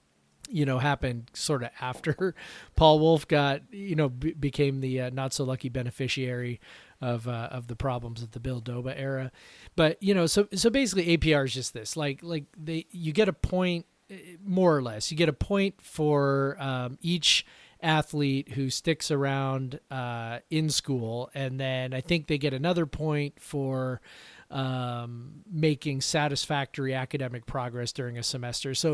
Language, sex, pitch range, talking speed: English, male, 130-155 Hz, 170 wpm